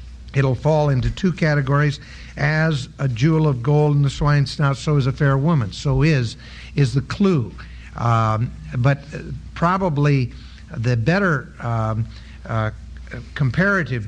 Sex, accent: male, American